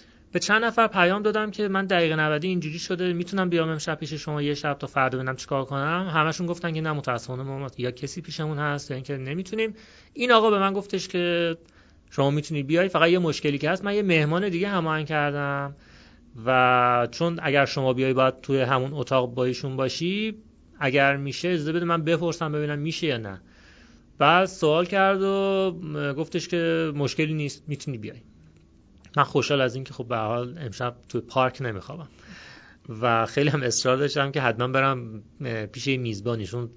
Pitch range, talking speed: 120-170 Hz, 180 wpm